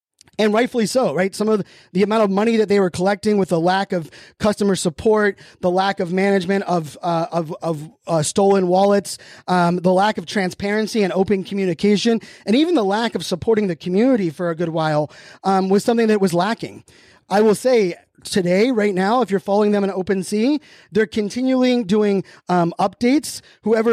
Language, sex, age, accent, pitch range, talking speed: English, male, 30-49, American, 185-220 Hz, 190 wpm